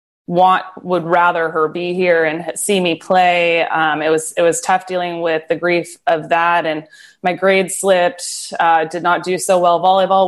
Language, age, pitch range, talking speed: English, 20-39, 160-195 Hz, 195 wpm